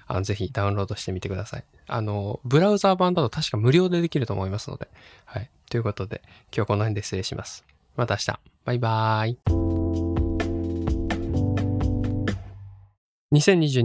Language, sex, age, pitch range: Japanese, male, 20-39, 105-155 Hz